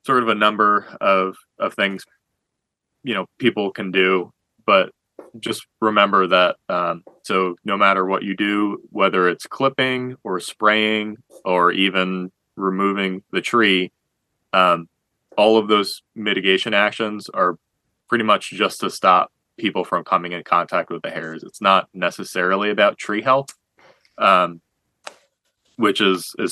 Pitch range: 85-100 Hz